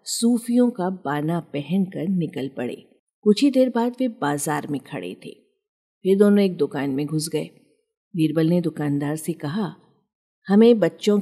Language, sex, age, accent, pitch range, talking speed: Hindi, female, 50-69, native, 155-215 Hz, 155 wpm